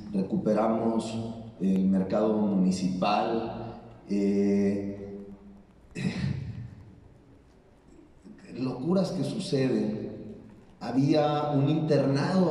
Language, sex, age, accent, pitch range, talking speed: Spanish, male, 40-59, Mexican, 120-165 Hz, 60 wpm